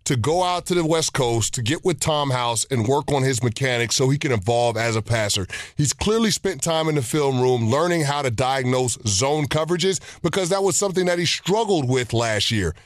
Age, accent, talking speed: 30-49, American, 225 wpm